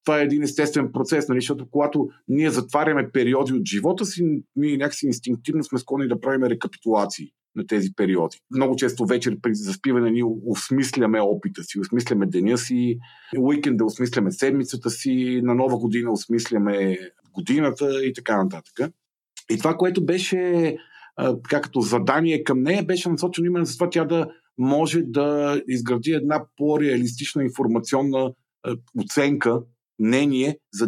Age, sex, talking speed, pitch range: 50-69, male, 140 wpm, 120-155 Hz